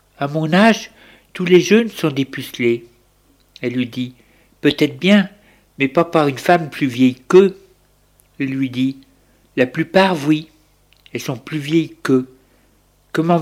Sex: male